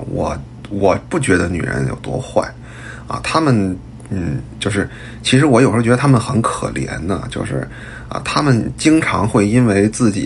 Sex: male